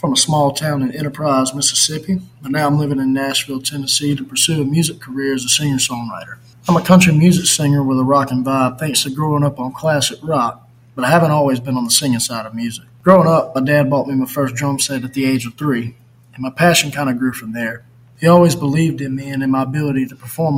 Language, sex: English, male